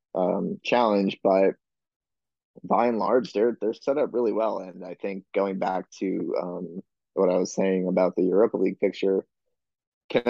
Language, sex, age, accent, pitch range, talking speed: English, male, 20-39, American, 95-110 Hz, 170 wpm